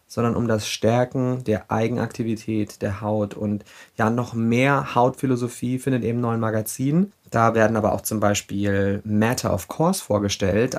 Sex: male